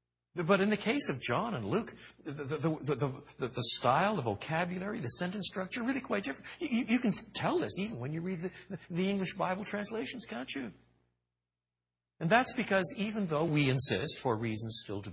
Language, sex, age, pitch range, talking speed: English, male, 60-79, 100-160 Hz, 195 wpm